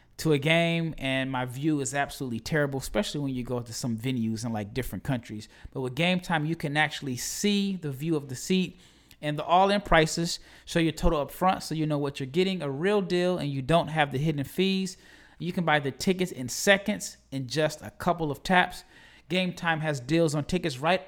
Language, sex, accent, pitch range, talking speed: English, male, American, 135-180 Hz, 215 wpm